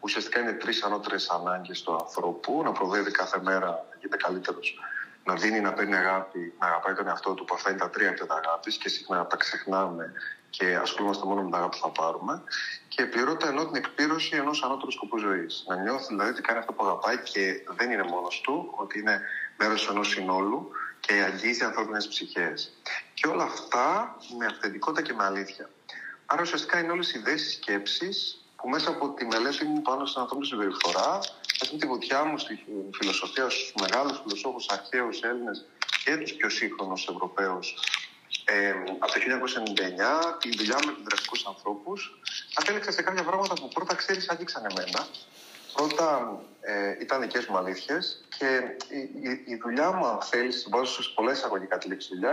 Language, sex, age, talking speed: Greek, male, 30-49, 180 wpm